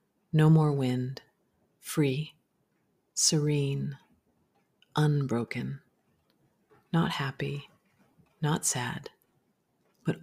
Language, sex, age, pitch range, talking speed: English, female, 40-59, 140-165 Hz, 65 wpm